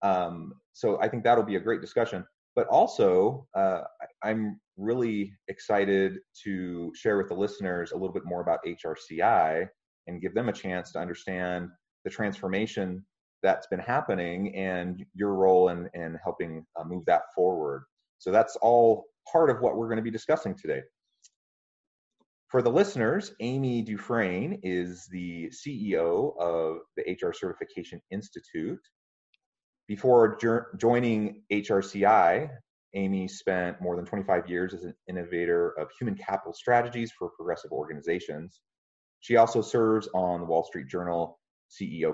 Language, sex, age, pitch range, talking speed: English, male, 30-49, 85-110 Hz, 145 wpm